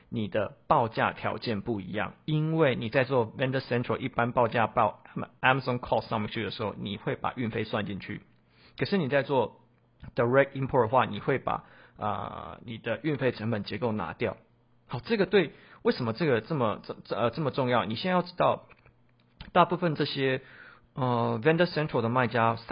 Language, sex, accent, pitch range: Chinese, male, native, 110-135 Hz